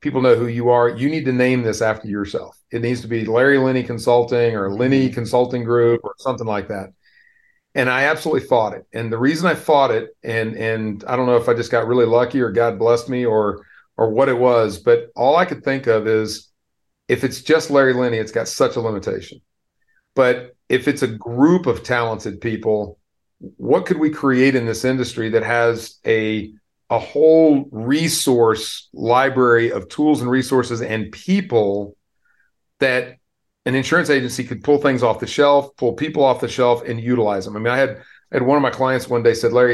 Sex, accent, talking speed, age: male, American, 200 wpm, 40-59